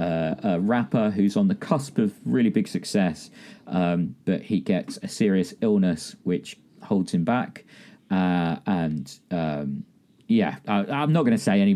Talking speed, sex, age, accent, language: 165 wpm, male, 40-59, British, English